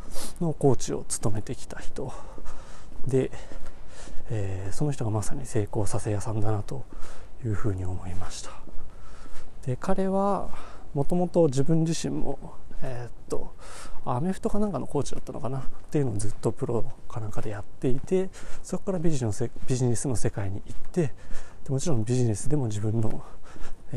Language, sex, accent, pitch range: Japanese, male, native, 105-140 Hz